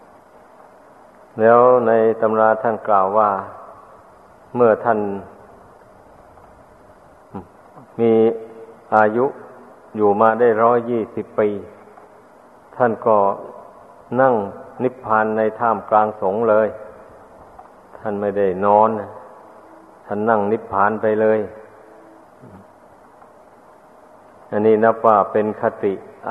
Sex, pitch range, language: male, 105-115 Hz, Thai